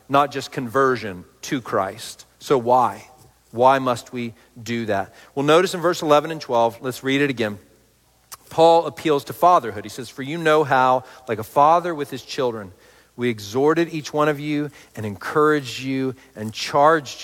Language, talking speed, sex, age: English, 175 wpm, male, 40-59